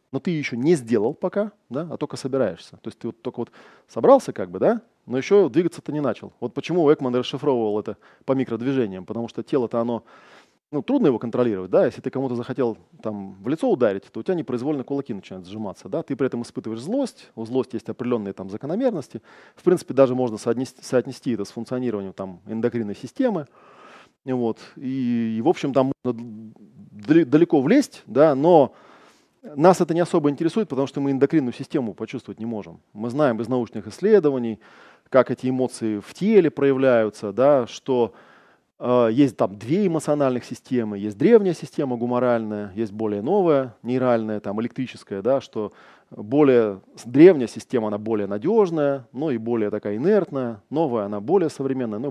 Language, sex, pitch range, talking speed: Russian, male, 110-145 Hz, 175 wpm